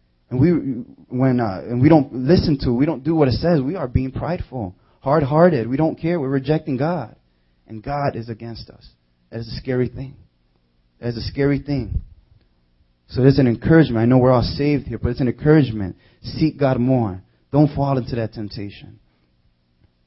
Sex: male